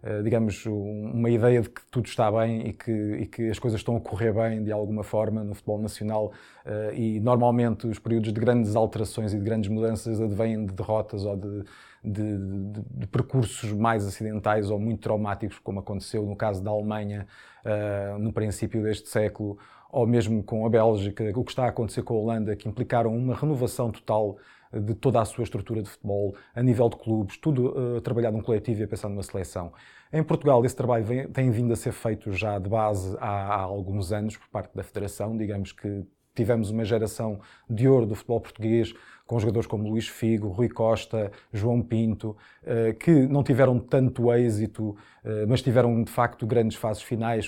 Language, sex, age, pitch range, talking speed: Portuguese, male, 20-39, 105-120 Hz, 190 wpm